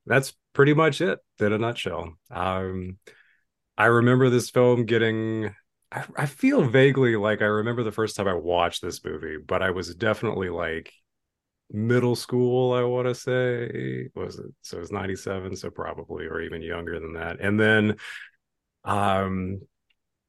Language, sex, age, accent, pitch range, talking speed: English, male, 30-49, American, 100-125 Hz, 160 wpm